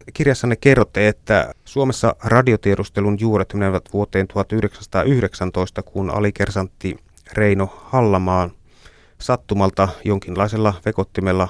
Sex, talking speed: male, 85 wpm